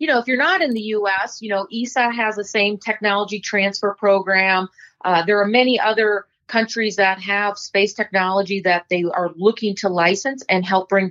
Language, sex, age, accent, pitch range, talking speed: English, female, 30-49, American, 190-220 Hz, 195 wpm